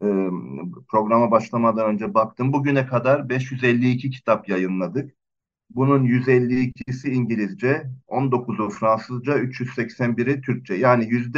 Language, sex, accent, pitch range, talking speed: Turkish, male, native, 110-135 Hz, 90 wpm